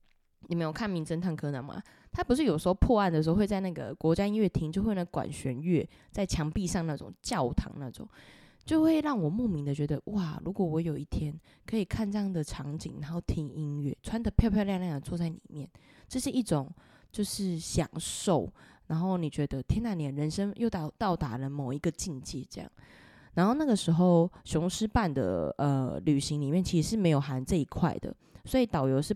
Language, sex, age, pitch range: Chinese, female, 20-39, 145-195 Hz